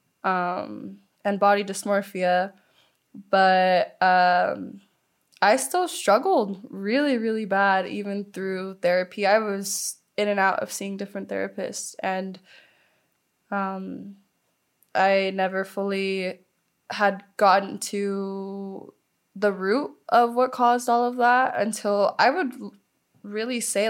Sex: female